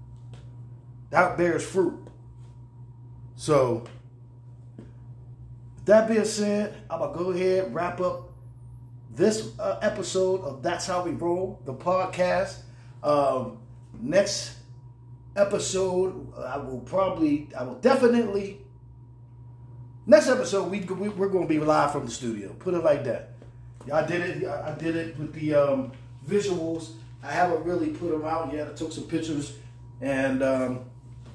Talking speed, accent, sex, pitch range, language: 145 wpm, American, male, 120-170 Hz, English